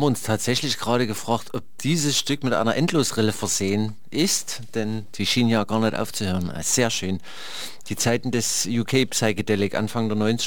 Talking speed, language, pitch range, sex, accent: 170 wpm, German, 105-135 Hz, male, German